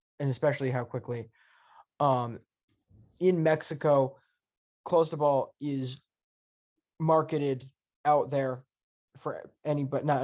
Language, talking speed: English, 95 wpm